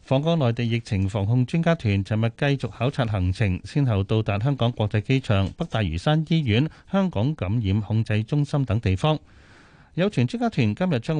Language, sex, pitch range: Chinese, male, 105-145 Hz